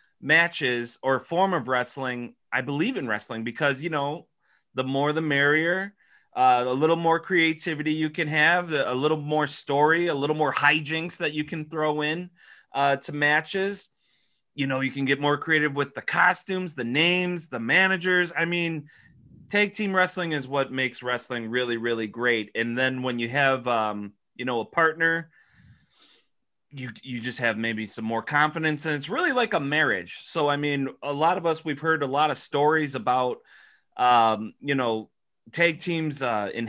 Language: English